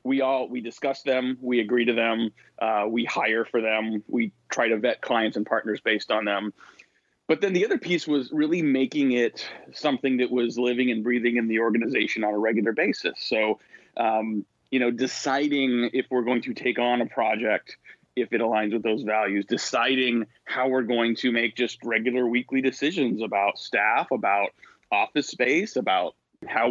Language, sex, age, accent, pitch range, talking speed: English, male, 30-49, American, 115-130 Hz, 185 wpm